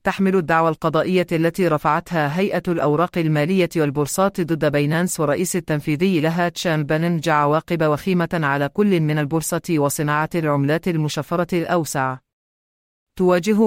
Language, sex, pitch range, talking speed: English, female, 150-180 Hz, 120 wpm